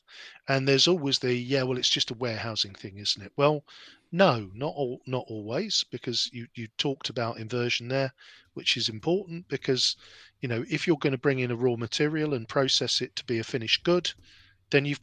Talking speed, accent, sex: 205 wpm, British, male